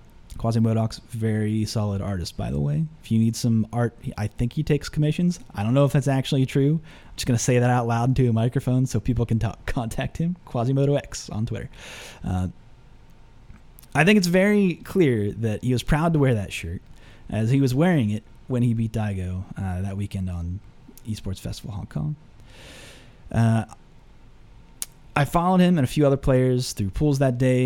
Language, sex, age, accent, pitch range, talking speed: English, male, 30-49, American, 105-145 Hz, 195 wpm